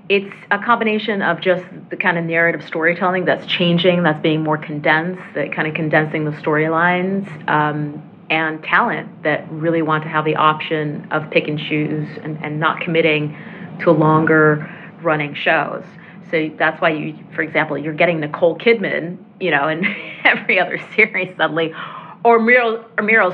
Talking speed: 165 wpm